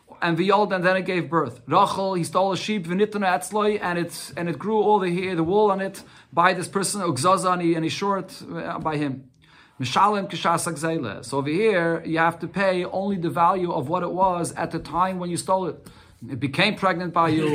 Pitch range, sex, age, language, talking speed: 135-180 Hz, male, 30-49, English, 220 wpm